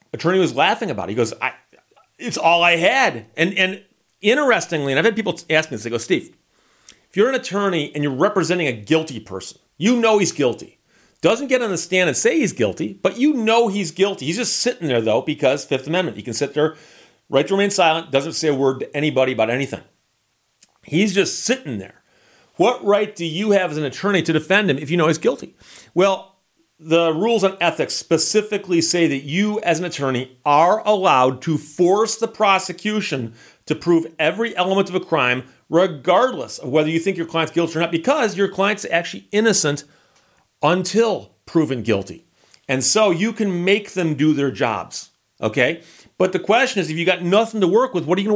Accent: American